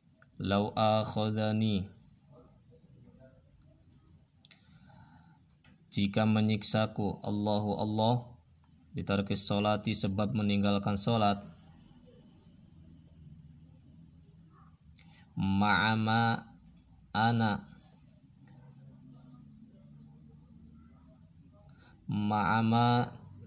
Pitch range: 85-110 Hz